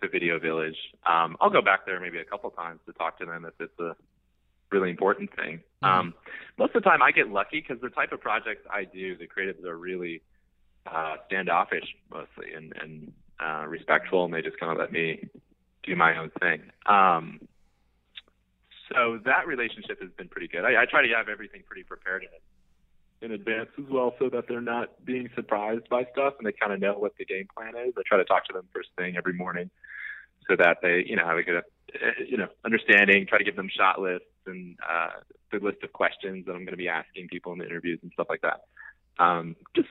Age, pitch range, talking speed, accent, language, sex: 30-49, 80-115 Hz, 220 wpm, American, English, male